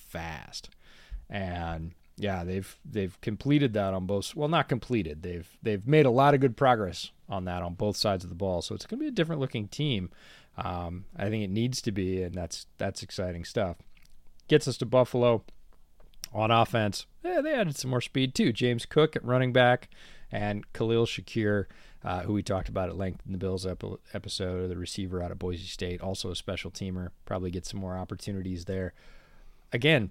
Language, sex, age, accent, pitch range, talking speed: English, male, 30-49, American, 95-115 Hz, 195 wpm